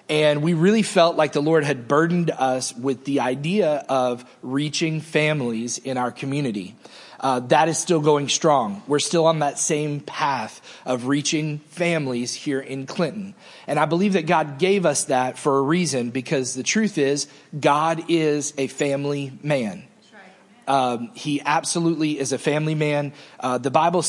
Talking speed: 165 wpm